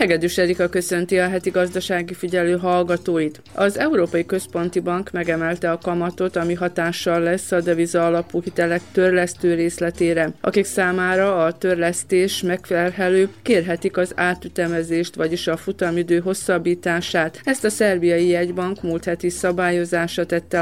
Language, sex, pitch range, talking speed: Hungarian, female, 170-185 Hz, 130 wpm